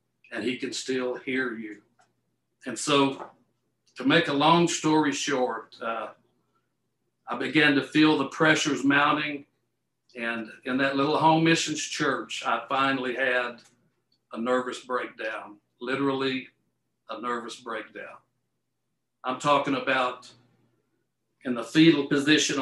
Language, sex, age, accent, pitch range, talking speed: English, male, 60-79, American, 125-145 Hz, 120 wpm